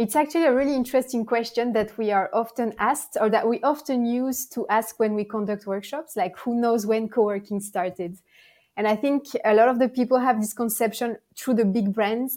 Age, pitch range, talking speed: 20-39, 205-235 Hz, 210 wpm